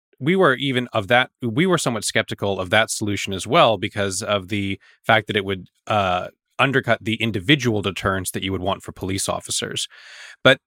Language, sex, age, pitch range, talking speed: English, male, 20-39, 100-115 Hz, 190 wpm